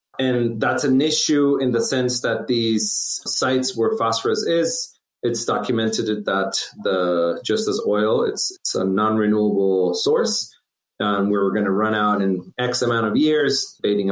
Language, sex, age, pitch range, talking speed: English, male, 30-49, 105-135 Hz, 160 wpm